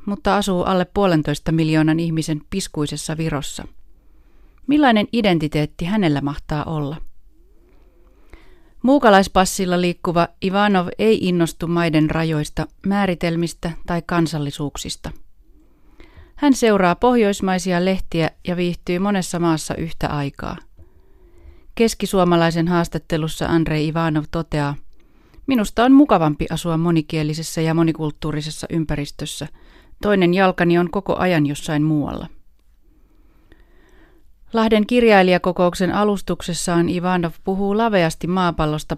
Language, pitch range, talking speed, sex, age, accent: Finnish, 155-190 Hz, 90 wpm, female, 30-49, native